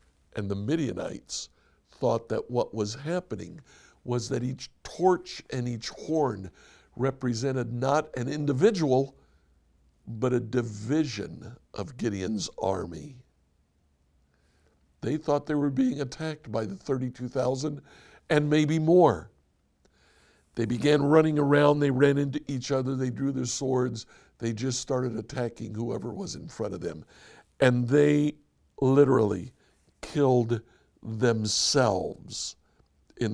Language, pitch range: English, 110-150 Hz